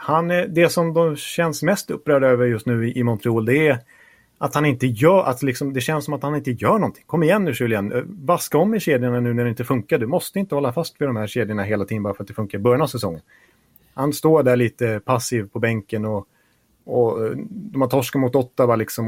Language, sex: Swedish, male